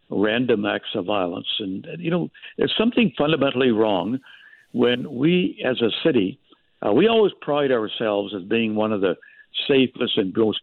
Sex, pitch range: male, 110-135 Hz